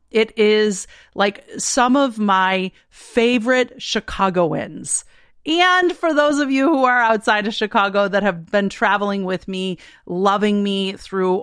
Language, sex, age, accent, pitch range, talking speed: English, female, 30-49, American, 185-245 Hz, 140 wpm